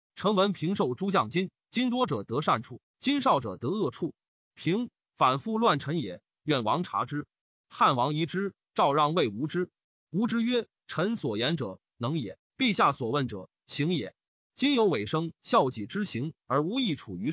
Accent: native